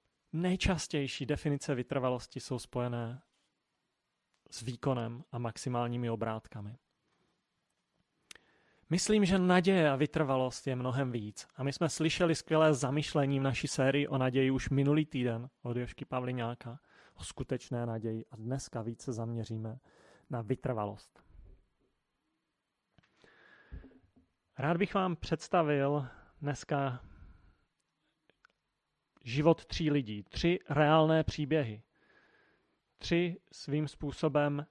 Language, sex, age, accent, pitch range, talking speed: Czech, male, 30-49, native, 125-160 Hz, 100 wpm